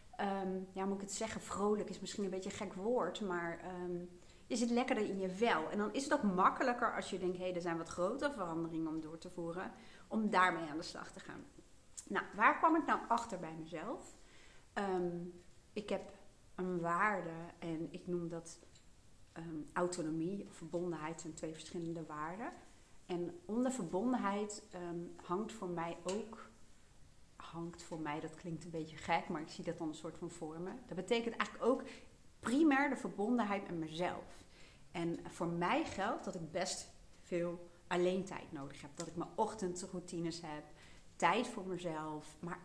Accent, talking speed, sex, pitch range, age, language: Dutch, 180 wpm, female, 165-200 Hz, 40-59, Dutch